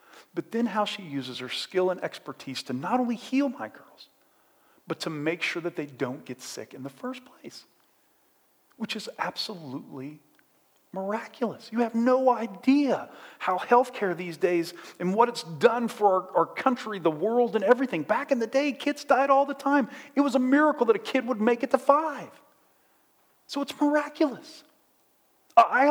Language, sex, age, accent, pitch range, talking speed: English, male, 40-59, American, 190-275 Hz, 175 wpm